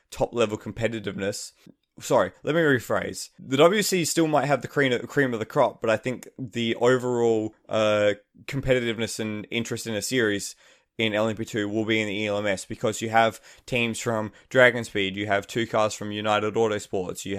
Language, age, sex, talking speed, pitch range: English, 20-39, male, 175 wpm, 105-125 Hz